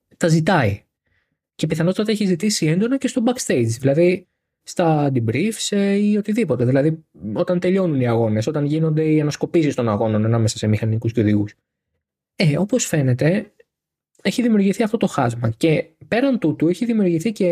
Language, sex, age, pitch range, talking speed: Greek, male, 20-39, 135-210 Hz, 150 wpm